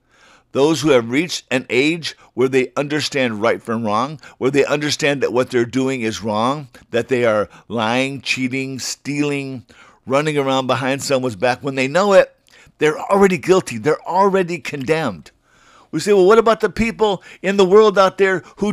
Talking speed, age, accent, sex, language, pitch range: 175 wpm, 50-69, American, male, English, 120-175 Hz